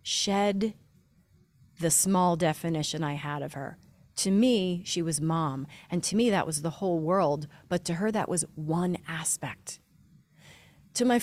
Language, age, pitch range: English, 30-49, 160-210 Hz